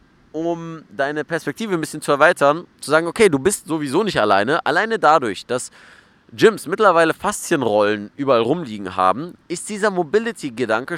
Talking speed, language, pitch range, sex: 150 wpm, German, 115-160 Hz, male